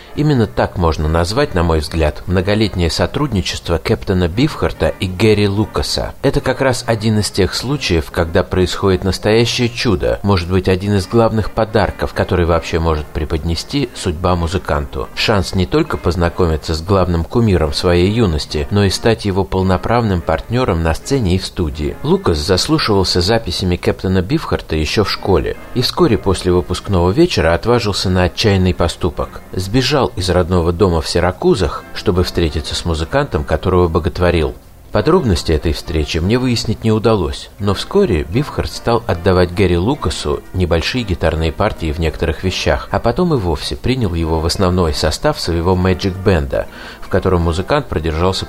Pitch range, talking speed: 85-105 Hz, 150 wpm